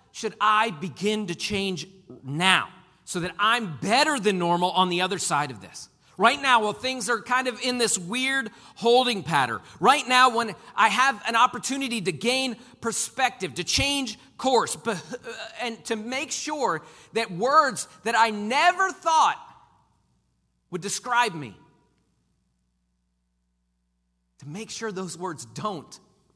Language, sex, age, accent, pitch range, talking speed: English, male, 40-59, American, 180-240 Hz, 140 wpm